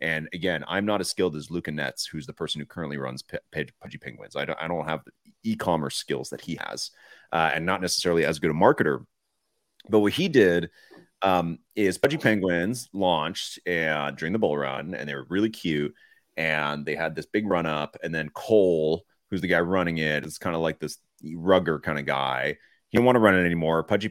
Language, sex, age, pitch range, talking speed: English, male, 30-49, 80-125 Hz, 215 wpm